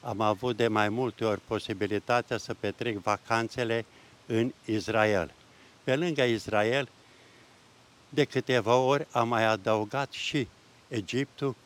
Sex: male